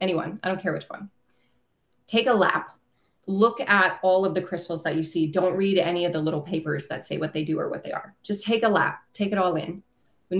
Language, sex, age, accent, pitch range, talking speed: English, female, 30-49, American, 165-200 Hz, 250 wpm